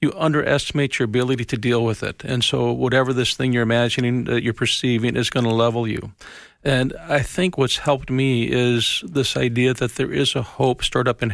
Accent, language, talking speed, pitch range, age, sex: American, English, 215 wpm, 120-140 Hz, 50-69, male